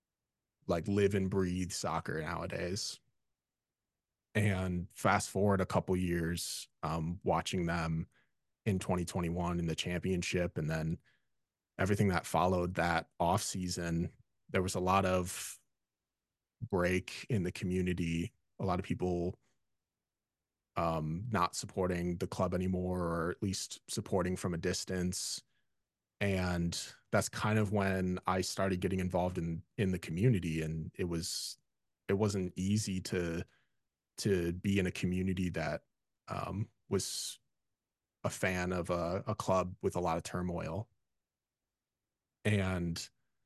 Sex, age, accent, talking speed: male, 30-49, American, 130 wpm